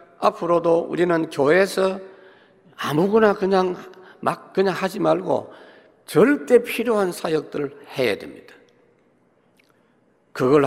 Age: 60-79